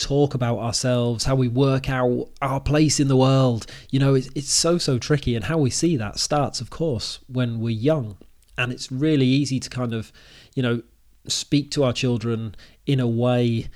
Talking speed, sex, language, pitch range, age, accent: 200 wpm, male, English, 115-140 Hz, 30-49, British